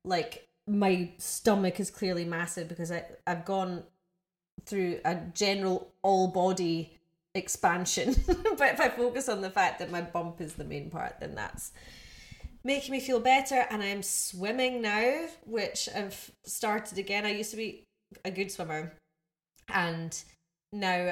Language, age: English, 20-39